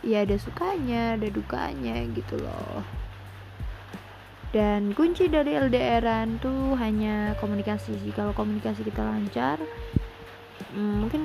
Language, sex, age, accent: Indonesian, female, 20-39, native